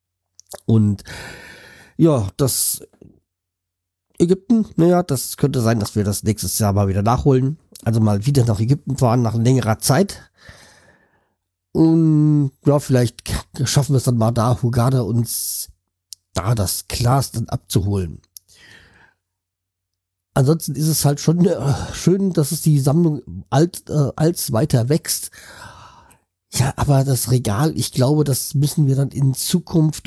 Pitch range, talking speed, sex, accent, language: 100-150 Hz, 140 wpm, male, German, German